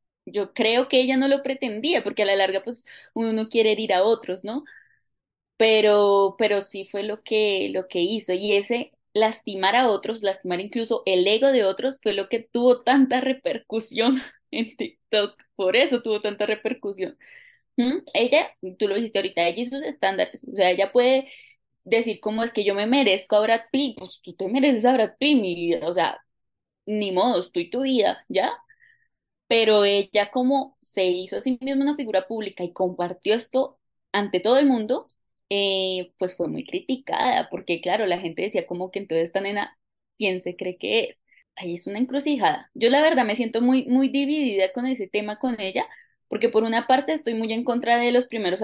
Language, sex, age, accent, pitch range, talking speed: Spanish, female, 10-29, Colombian, 195-255 Hz, 195 wpm